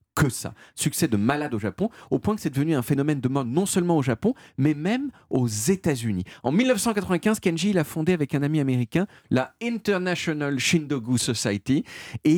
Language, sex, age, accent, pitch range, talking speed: French, male, 40-59, French, 110-175 Hz, 185 wpm